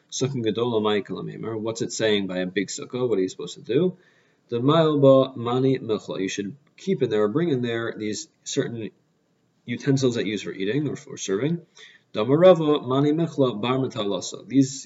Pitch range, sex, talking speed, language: 110-145 Hz, male, 135 wpm, English